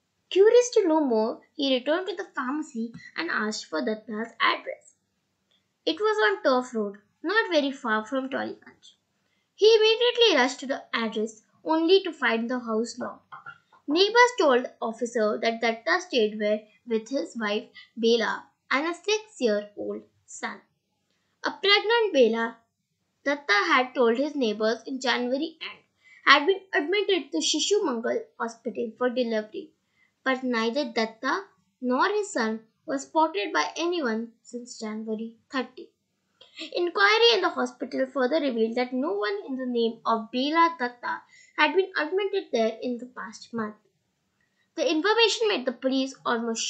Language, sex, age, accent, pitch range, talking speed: English, female, 20-39, Indian, 225-345 Hz, 145 wpm